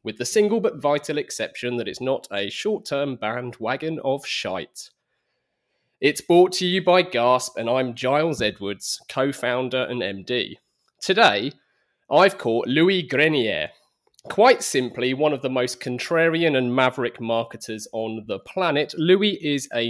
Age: 20-39